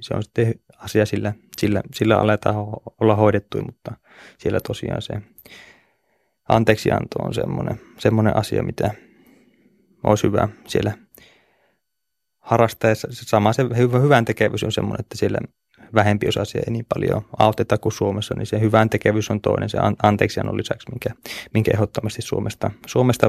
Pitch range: 110-120 Hz